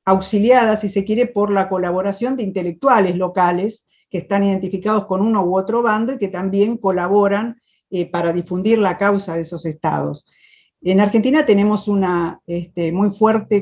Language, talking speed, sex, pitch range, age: Spanish, 165 wpm, female, 180-215 Hz, 50-69